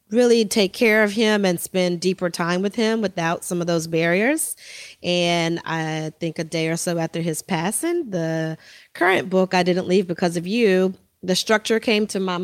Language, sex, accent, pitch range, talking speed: English, female, American, 165-195 Hz, 195 wpm